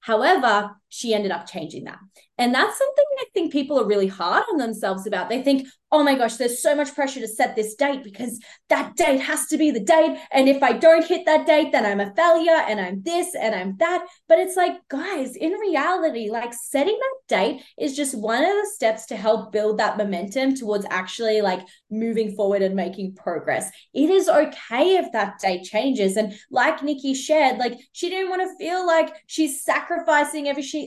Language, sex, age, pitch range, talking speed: English, female, 20-39, 215-295 Hz, 210 wpm